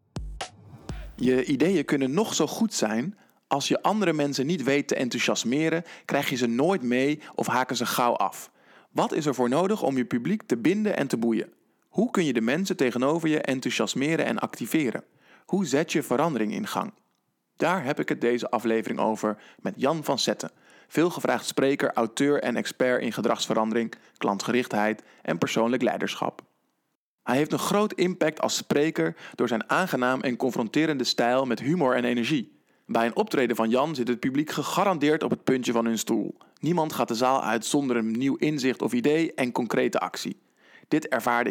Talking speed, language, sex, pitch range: 180 wpm, Dutch, male, 120-160 Hz